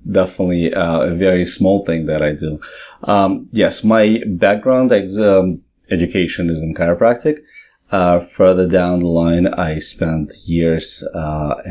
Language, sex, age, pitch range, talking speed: English, male, 30-49, 80-95 Hz, 145 wpm